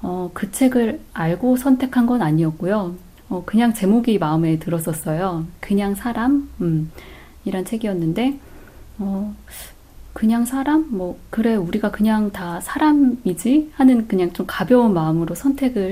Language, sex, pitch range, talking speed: English, female, 170-225 Hz, 120 wpm